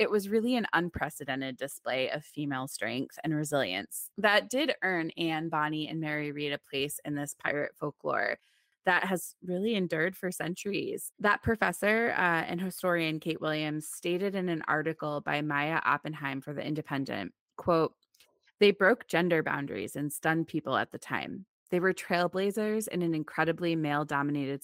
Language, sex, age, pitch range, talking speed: English, female, 20-39, 155-195 Hz, 165 wpm